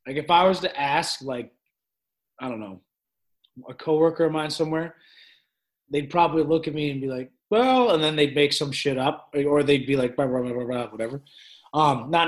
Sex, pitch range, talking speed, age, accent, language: male, 125-165 Hz, 200 wpm, 20-39, American, English